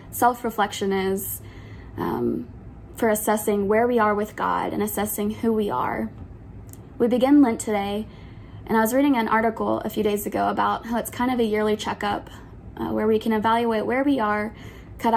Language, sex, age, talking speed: English, female, 20-39, 180 wpm